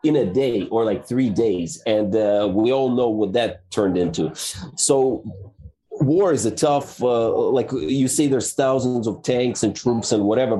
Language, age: English, 30-49